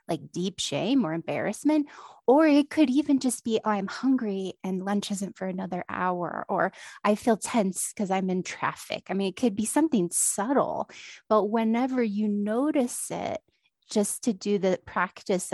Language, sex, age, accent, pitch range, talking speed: English, female, 30-49, American, 180-230 Hz, 175 wpm